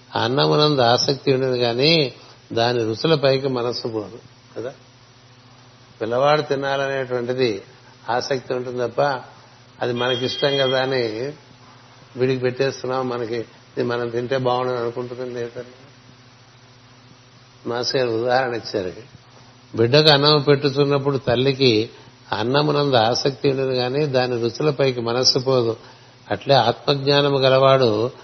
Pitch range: 120-135 Hz